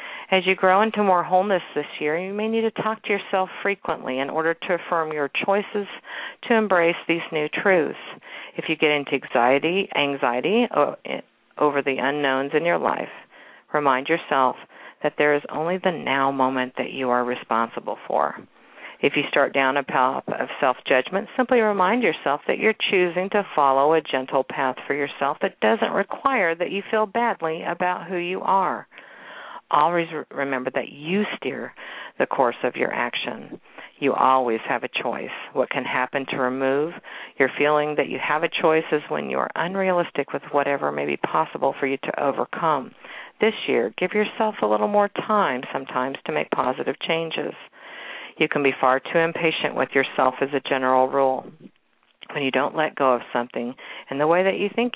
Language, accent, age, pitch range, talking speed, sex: English, American, 50-69, 135-190 Hz, 180 wpm, female